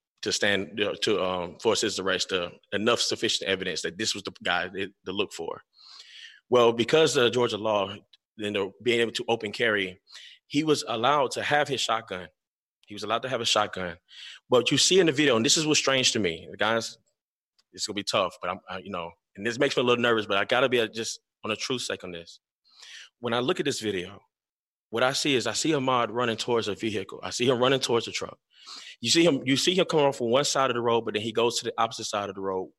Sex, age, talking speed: male, 20-39, 245 wpm